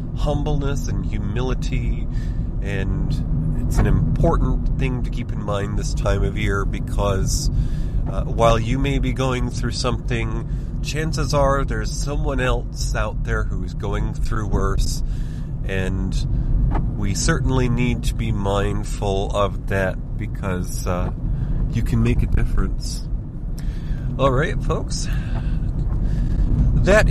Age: 30-49